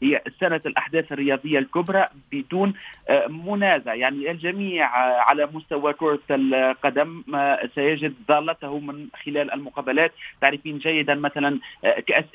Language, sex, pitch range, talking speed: Arabic, male, 145-170 Hz, 105 wpm